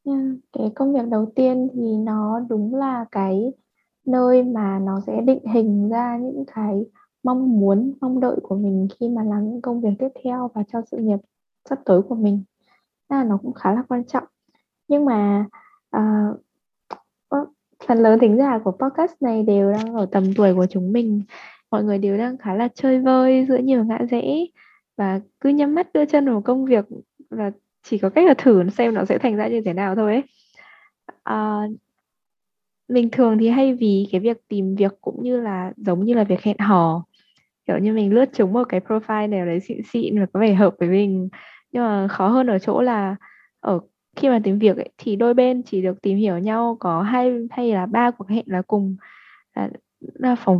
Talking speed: 205 wpm